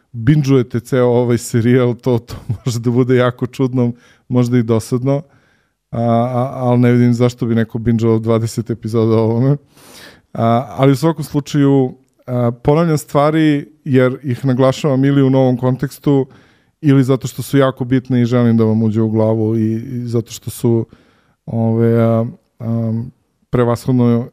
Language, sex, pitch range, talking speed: English, male, 115-130 Hz, 150 wpm